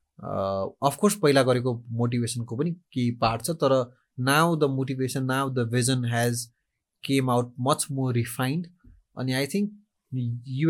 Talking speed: 140 wpm